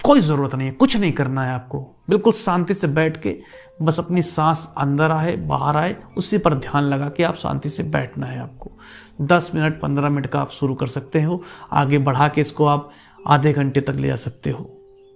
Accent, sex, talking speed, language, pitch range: native, male, 215 wpm, Hindi, 145-195 Hz